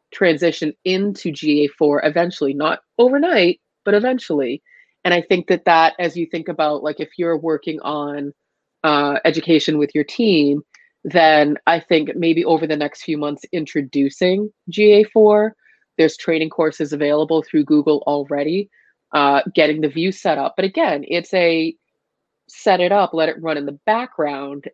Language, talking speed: English, 155 wpm